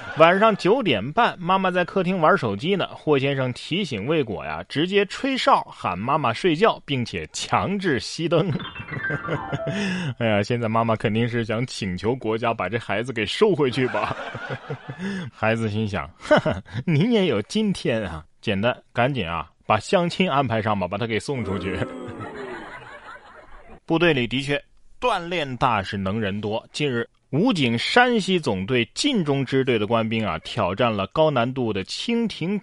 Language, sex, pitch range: Chinese, male, 115-190 Hz